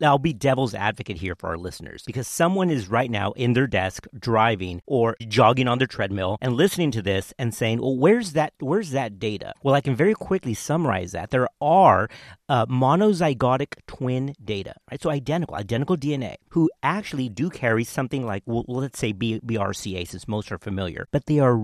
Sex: male